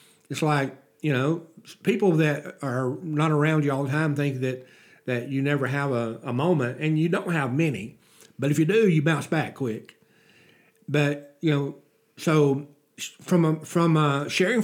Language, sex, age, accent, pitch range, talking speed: English, male, 60-79, American, 130-175 Hz, 180 wpm